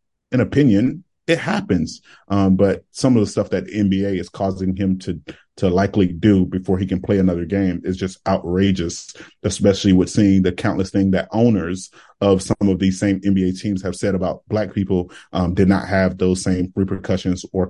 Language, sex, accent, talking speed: English, male, American, 190 wpm